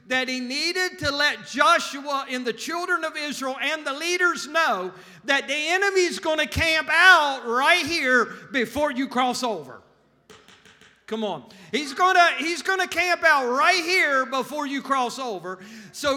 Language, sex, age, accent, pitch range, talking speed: English, male, 50-69, American, 245-330 Hz, 165 wpm